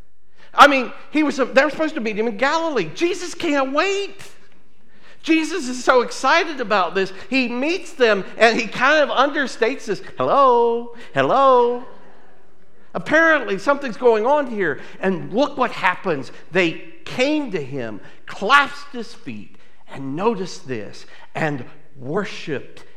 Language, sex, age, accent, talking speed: English, male, 50-69, American, 140 wpm